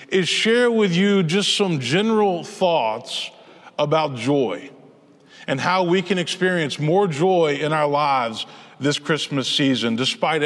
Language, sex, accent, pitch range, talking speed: English, male, American, 165-210 Hz, 140 wpm